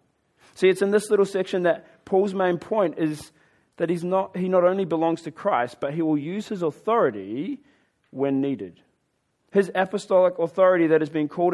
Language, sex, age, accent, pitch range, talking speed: English, male, 30-49, Australian, 155-205 Hz, 180 wpm